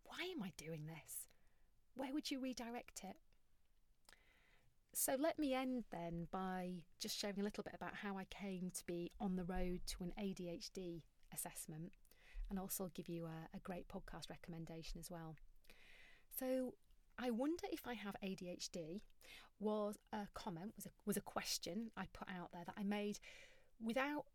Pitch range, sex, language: 175-220 Hz, female, English